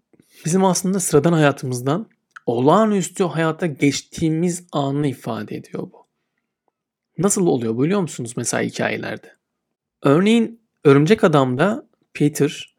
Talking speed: 100 wpm